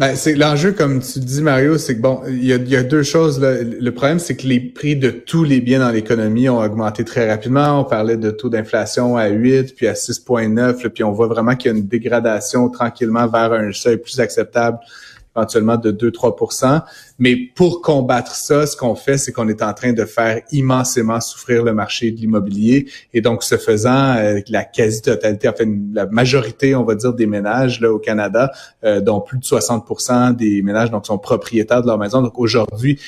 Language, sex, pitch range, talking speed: French, male, 110-130 Hz, 210 wpm